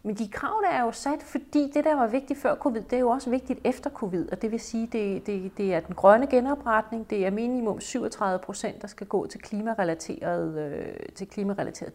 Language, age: Danish, 40-59